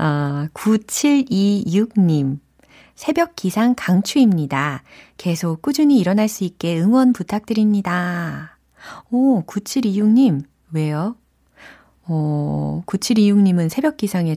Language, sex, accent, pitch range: Korean, female, native, 155-225 Hz